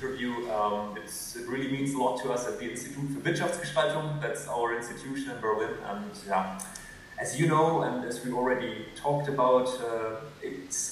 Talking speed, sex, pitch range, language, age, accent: 175 wpm, male, 125-150 Hz, Dutch, 30-49, German